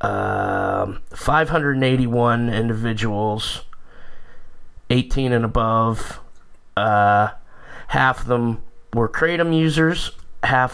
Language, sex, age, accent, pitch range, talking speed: English, male, 20-39, American, 110-130 Hz, 80 wpm